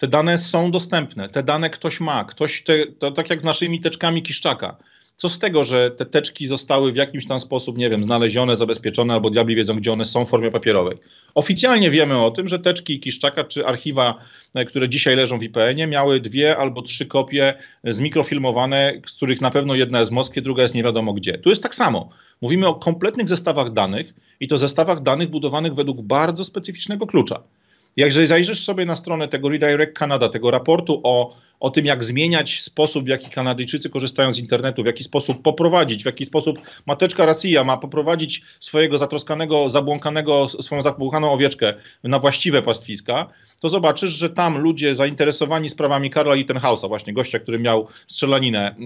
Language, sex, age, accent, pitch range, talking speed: Polish, male, 40-59, native, 125-155 Hz, 180 wpm